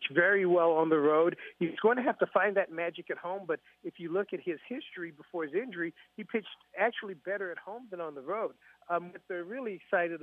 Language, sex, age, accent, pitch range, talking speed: English, male, 50-69, American, 165-200 Hz, 235 wpm